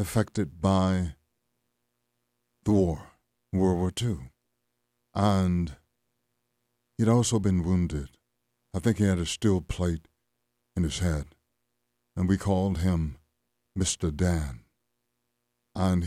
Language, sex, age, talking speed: English, male, 60-79, 110 wpm